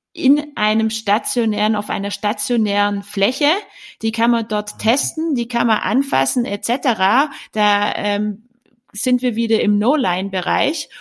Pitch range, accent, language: 205-245 Hz, German, German